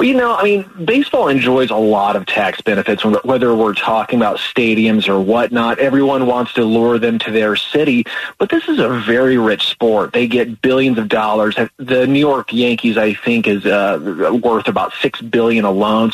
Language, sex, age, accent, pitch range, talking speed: English, male, 30-49, American, 115-155 Hz, 195 wpm